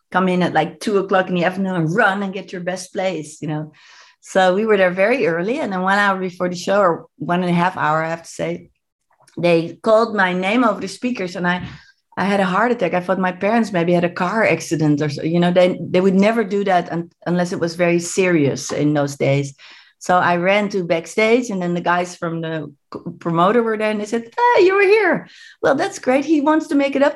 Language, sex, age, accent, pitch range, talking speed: English, female, 30-49, Dutch, 175-230 Hz, 245 wpm